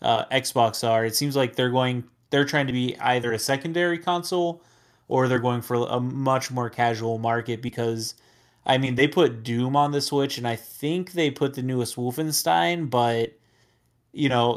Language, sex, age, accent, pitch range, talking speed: English, male, 20-39, American, 115-140 Hz, 185 wpm